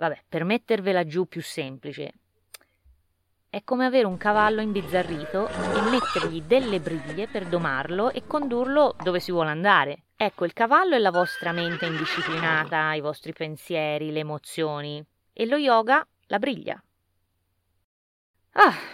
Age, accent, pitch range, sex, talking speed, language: 20-39, native, 140-180 Hz, female, 135 wpm, Italian